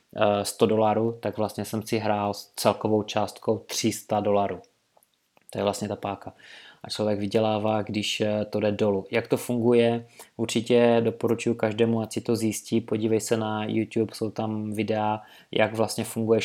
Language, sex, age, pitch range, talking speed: Czech, male, 20-39, 105-115 Hz, 160 wpm